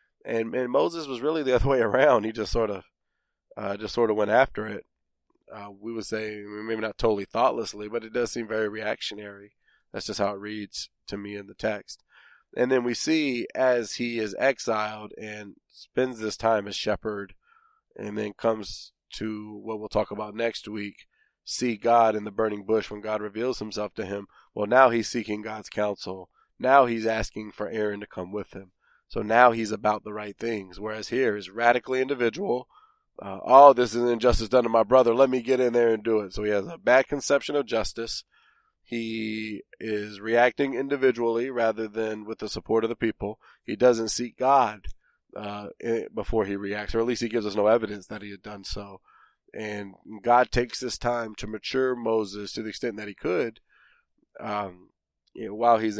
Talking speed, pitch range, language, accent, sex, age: 200 wpm, 105-120 Hz, English, American, male, 20-39